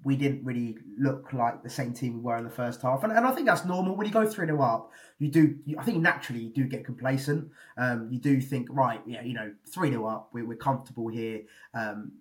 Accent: British